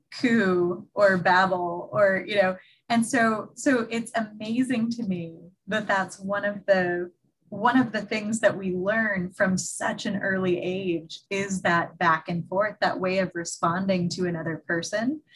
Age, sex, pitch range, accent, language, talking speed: 20-39, female, 170-220 Hz, American, English, 160 wpm